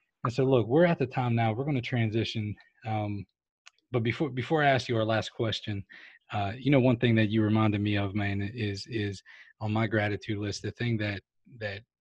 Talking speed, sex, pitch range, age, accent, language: 220 wpm, male, 105-125 Hz, 20-39, American, English